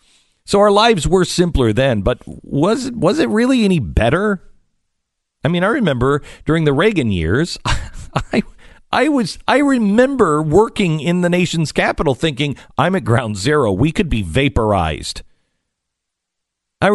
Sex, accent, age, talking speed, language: male, American, 50-69, 150 wpm, English